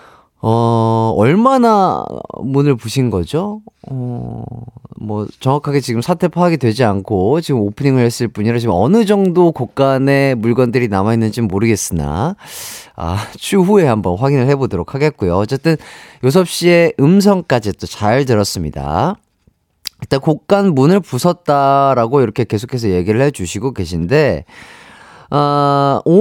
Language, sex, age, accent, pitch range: Korean, male, 30-49, native, 105-170 Hz